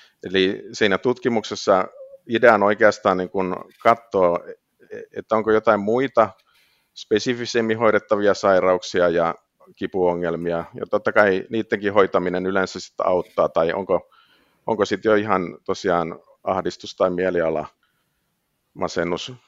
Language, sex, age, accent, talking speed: Finnish, male, 50-69, native, 105 wpm